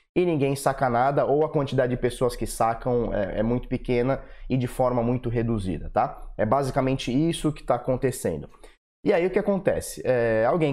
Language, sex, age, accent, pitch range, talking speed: Portuguese, male, 20-39, Brazilian, 115-145 Hz, 190 wpm